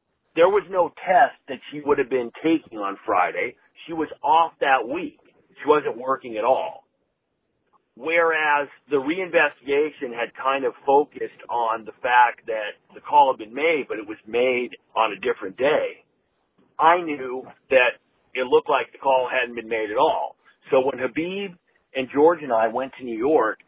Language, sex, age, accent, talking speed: English, male, 40-59, American, 175 wpm